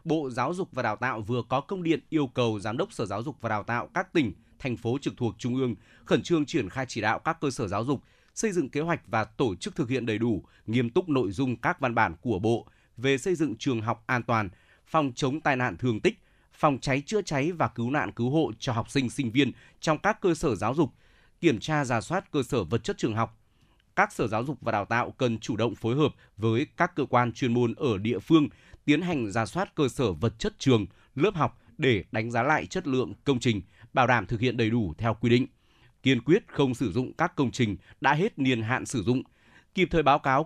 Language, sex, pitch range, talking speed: Vietnamese, male, 115-150 Hz, 250 wpm